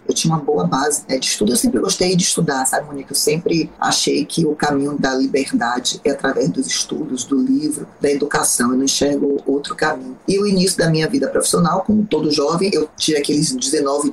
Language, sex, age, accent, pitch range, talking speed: Portuguese, female, 20-39, Brazilian, 140-170 Hz, 210 wpm